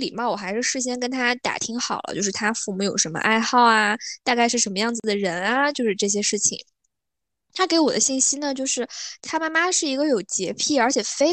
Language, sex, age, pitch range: Chinese, female, 10-29, 215-280 Hz